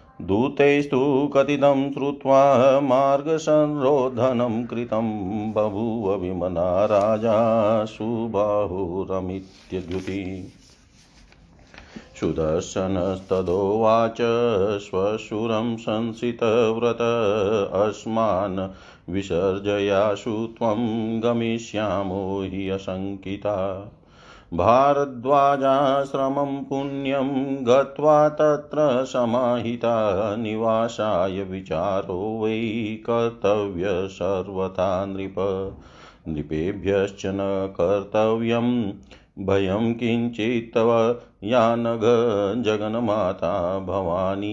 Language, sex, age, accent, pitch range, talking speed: Hindi, male, 50-69, native, 95-120 Hz, 40 wpm